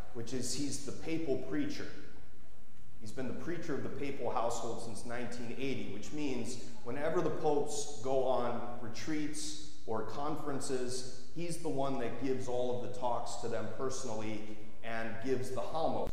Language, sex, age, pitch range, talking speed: English, male, 30-49, 110-145 Hz, 155 wpm